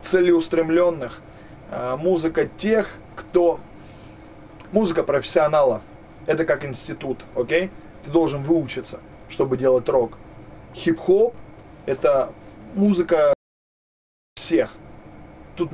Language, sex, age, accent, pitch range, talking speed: Russian, male, 20-39, native, 140-185 Hz, 85 wpm